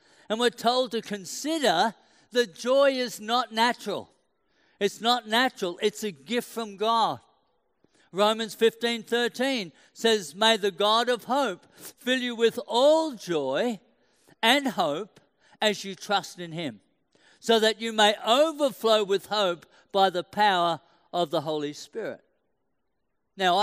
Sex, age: male, 60-79